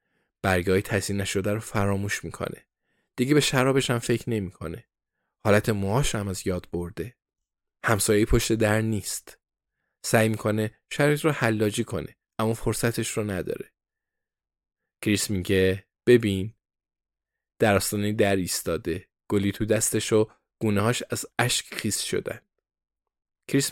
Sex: male